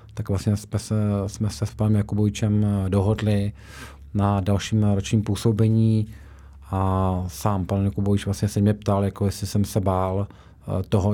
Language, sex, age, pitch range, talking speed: Czech, male, 40-59, 100-110 Hz, 150 wpm